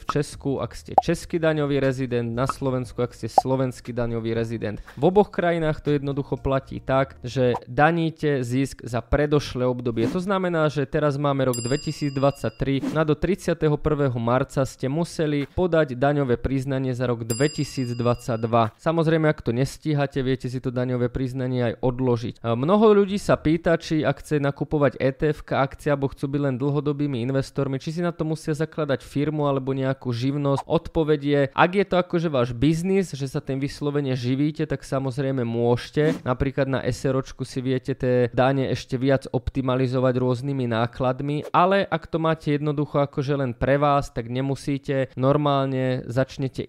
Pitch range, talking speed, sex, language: 125-150 Hz, 160 wpm, male, Slovak